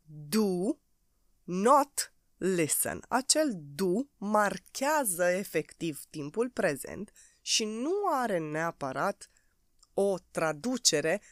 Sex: female